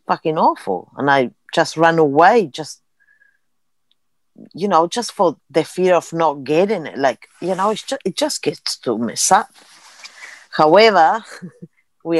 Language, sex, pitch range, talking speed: English, female, 145-180 Hz, 150 wpm